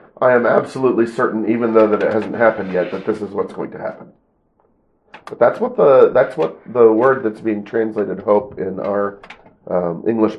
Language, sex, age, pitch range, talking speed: English, male, 40-59, 100-115 Hz, 195 wpm